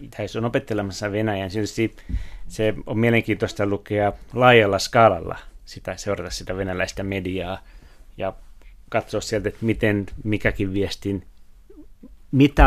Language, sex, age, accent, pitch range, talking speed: Finnish, male, 30-49, native, 95-115 Hz, 110 wpm